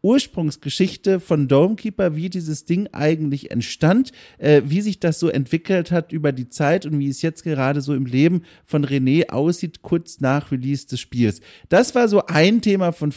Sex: male